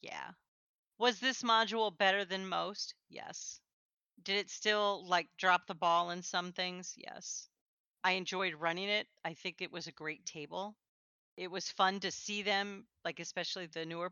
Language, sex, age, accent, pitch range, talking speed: English, female, 40-59, American, 170-200 Hz, 170 wpm